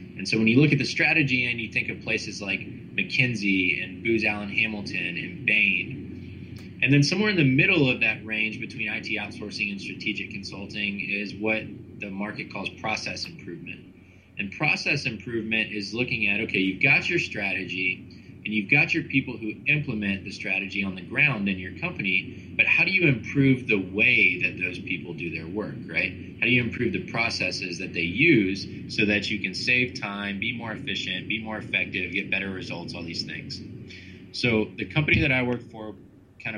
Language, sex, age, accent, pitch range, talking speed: English, male, 20-39, American, 95-115 Hz, 195 wpm